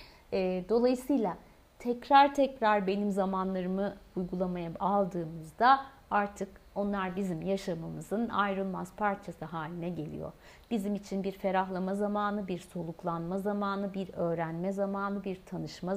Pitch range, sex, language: 175-210 Hz, female, Turkish